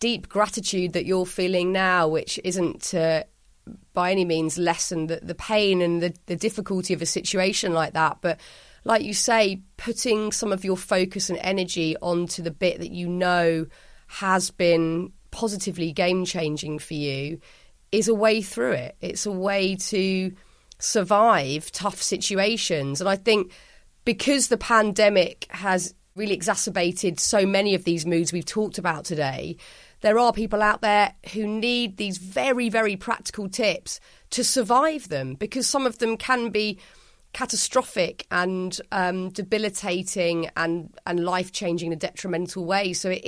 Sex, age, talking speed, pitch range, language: female, 30-49, 160 wpm, 180-215 Hz, English